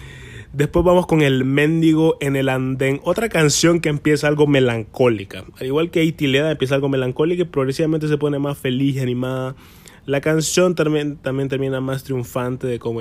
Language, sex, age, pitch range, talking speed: Spanish, male, 20-39, 105-150 Hz, 180 wpm